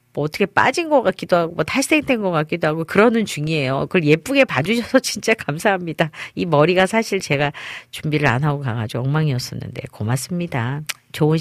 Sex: female